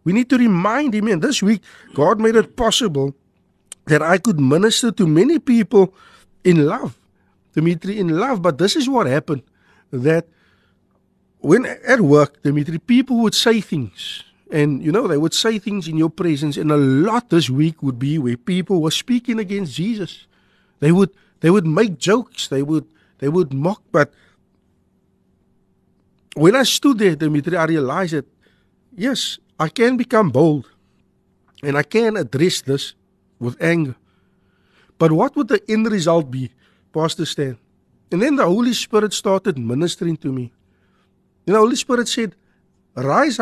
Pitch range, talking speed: 145-220 Hz, 160 wpm